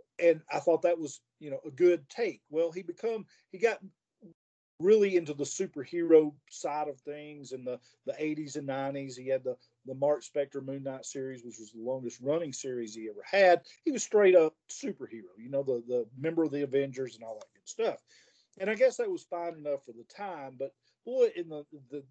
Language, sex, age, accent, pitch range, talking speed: English, male, 40-59, American, 135-180 Hz, 210 wpm